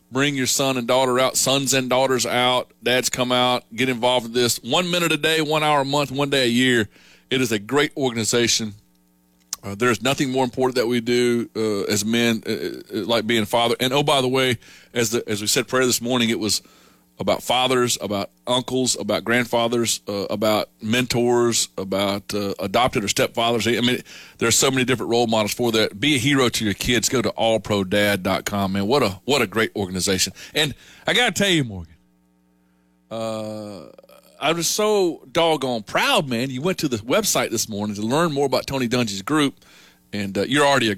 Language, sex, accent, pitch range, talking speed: English, male, American, 95-130 Hz, 200 wpm